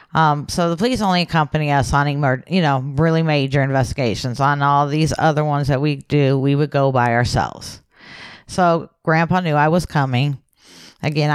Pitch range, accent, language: 145-195 Hz, American, English